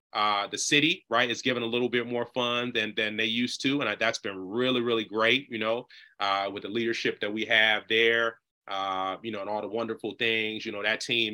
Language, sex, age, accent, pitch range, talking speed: English, male, 30-49, American, 110-145 Hz, 235 wpm